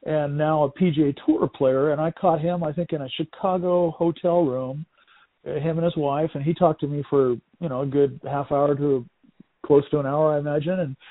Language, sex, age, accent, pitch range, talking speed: English, male, 50-69, American, 140-170 Hz, 220 wpm